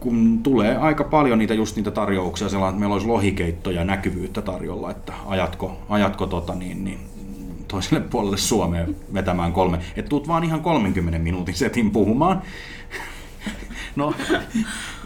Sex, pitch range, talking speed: male, 95-140 Hz, 140 wpm